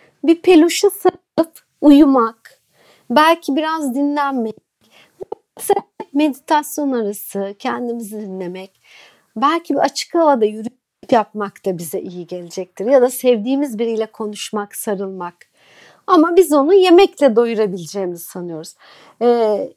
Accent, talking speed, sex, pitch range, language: native, 105 wpm, female, 215-305 Hz, Turkish